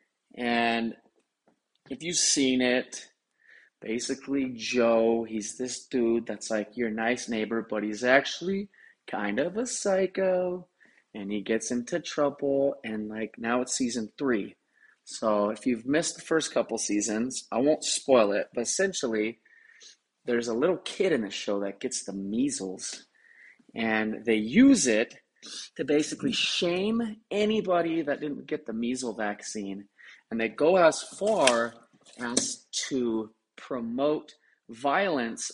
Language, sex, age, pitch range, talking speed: English, male, 30-49, 110-145 Hz, 135 wpm